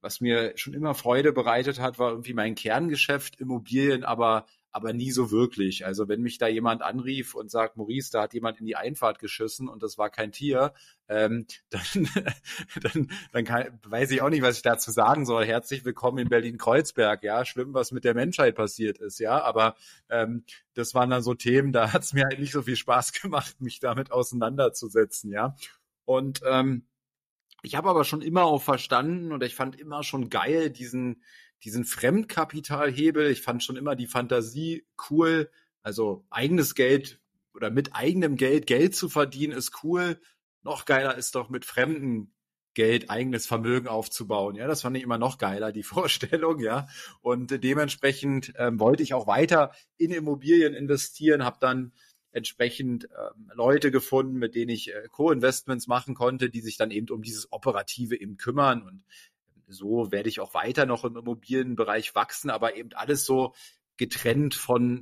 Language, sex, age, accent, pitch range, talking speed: German, male, 40-59, German, 115-140 Hz, 175 wpm